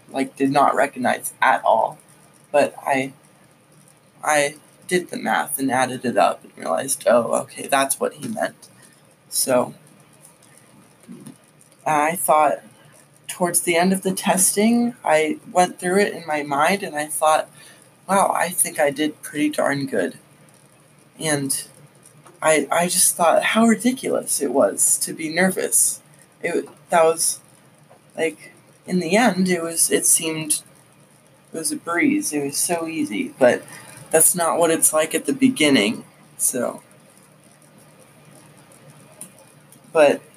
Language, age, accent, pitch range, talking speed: English, 20-39, American, 145-175 Hz, 140 wpm